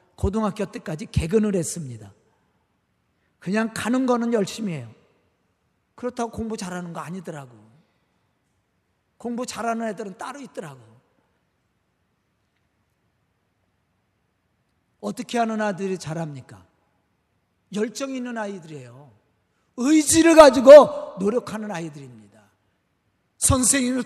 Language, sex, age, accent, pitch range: Korean, male, 40-59, native, 215-325 Hz